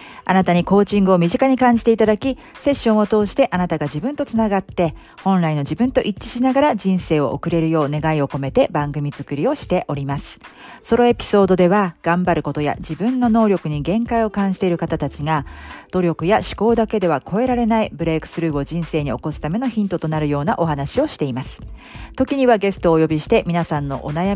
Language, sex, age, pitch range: Japanese, female, 40-59, 155-215 Hz